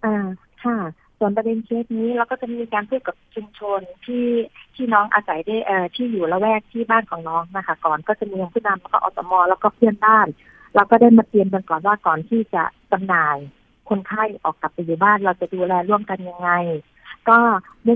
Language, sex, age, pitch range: Thai, female, 30-49, 185-230 Hz